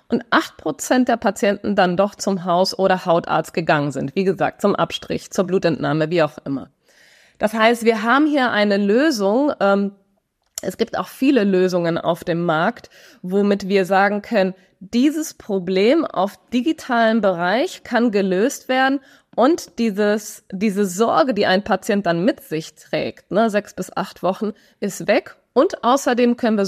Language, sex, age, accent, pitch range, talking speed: German, female, 20-39, German, 185-235 Hz, 160 wpm